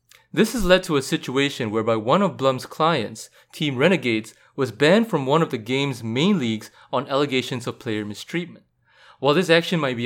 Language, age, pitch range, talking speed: English, 20-39, 120-175 Hz, 190 wpm